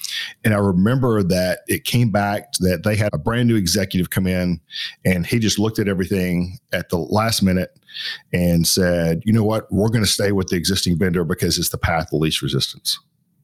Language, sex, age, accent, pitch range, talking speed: English, male, 50-69, American, 90-110 Hz, 205 wpm